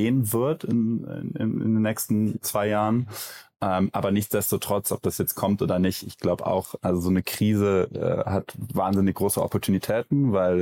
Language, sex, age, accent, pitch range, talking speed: German, male, 20-39, German, 90-105 Hz, 170 wpm